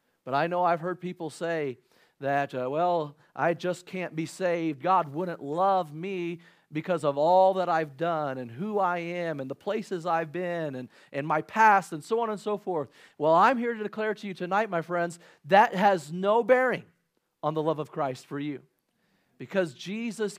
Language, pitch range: English, 155-195 Hz